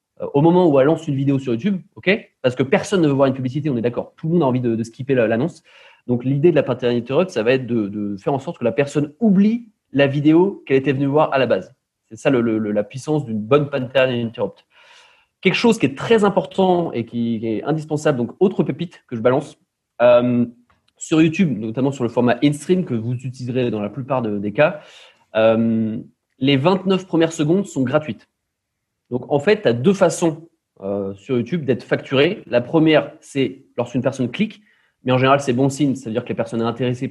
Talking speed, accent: 220 wpm, French